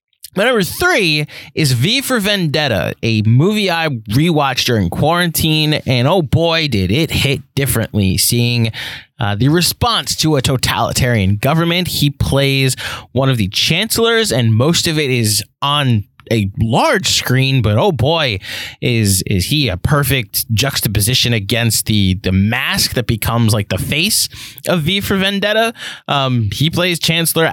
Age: 20-39